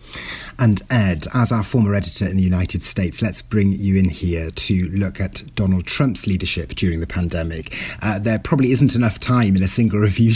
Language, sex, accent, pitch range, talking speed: English, male, British, 100-150 Hz, 195 wpm